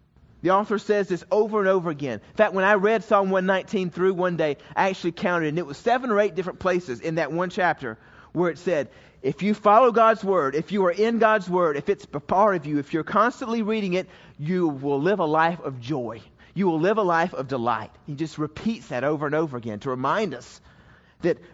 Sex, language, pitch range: male, English, 145-195 Hz